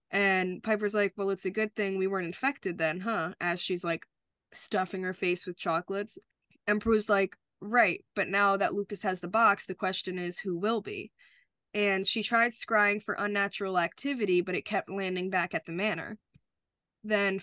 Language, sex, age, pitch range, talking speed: English, female, 20-39, 185-215 Hz, 185 wpm